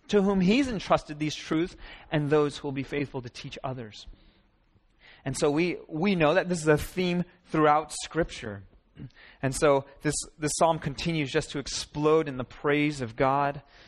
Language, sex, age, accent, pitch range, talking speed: English, male, 30-49, American, 125-160 Hz, 175 wpm